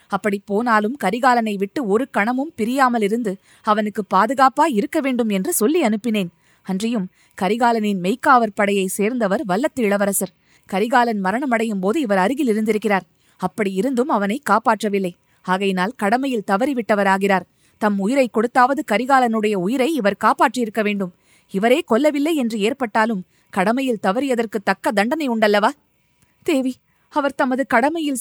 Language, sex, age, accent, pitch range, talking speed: Tamil, female, 20-39, native, 195-255 Hz, 120 wpm